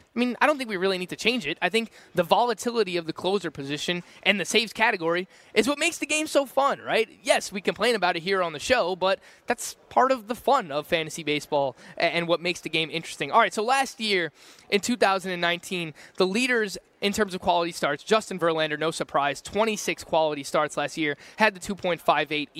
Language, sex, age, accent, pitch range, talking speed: English, male, 20-39, American, 160-210 Hz, 215 wpm